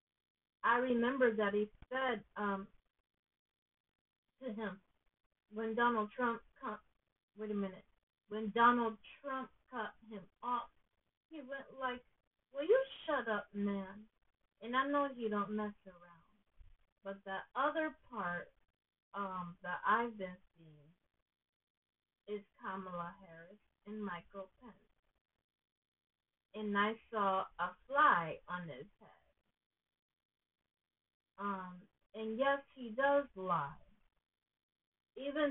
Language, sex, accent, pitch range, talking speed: English, female, American, 200-250 Hz, 110 wpm